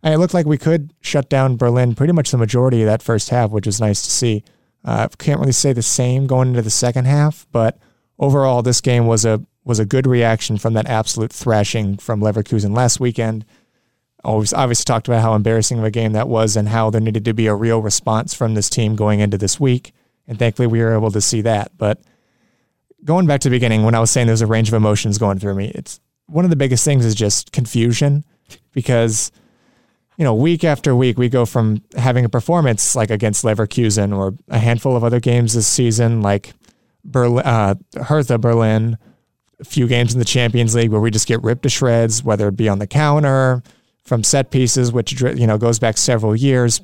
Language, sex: English, male